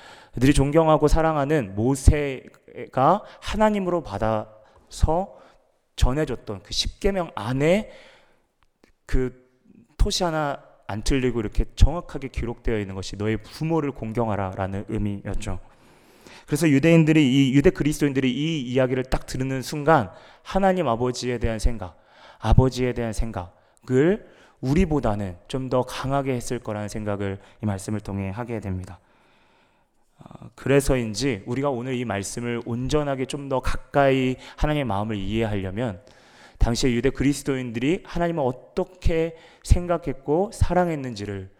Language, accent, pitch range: Korean, native, 105-140 Hz